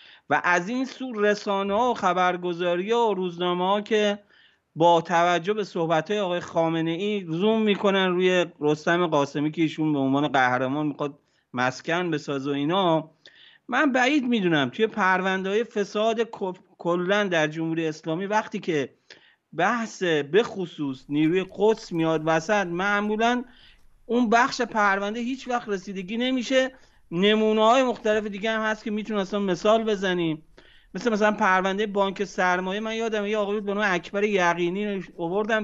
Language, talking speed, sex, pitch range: Persian, 155 wpm, male, 170-220 Hz